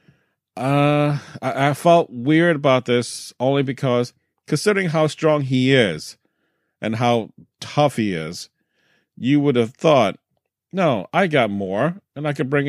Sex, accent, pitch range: male, American, 120-165 Hz